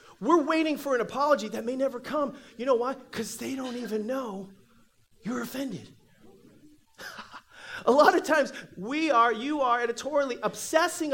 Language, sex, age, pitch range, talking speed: English, male, 30-49, 210-285 Hz, 155 wpm